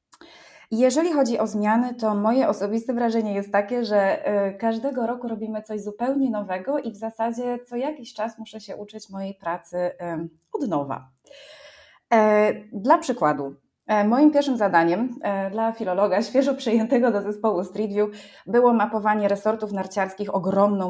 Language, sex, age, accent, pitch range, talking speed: Polish, female, 20-39, native, 185-230 Hz, 140 wpm